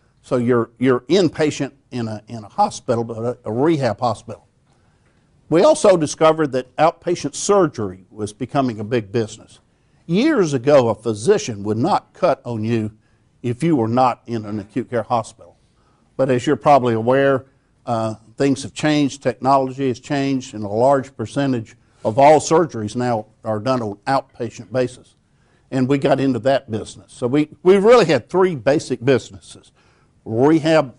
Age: 50-69